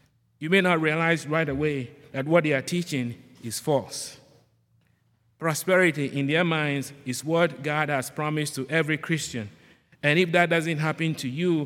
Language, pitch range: English, 130-170 Hz